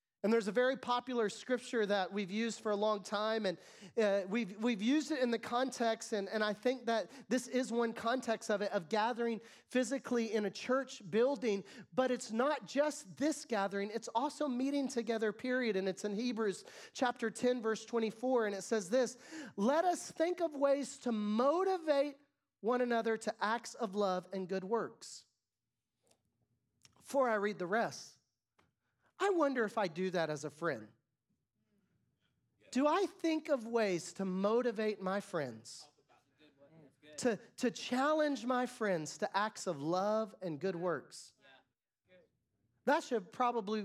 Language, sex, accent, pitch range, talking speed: English, male, American, 190-250 Hz, 160 wpm